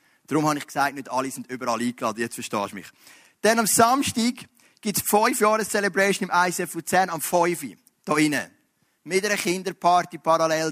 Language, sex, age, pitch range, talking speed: German, male, 30-49, 160-205 Hz, 160 wpm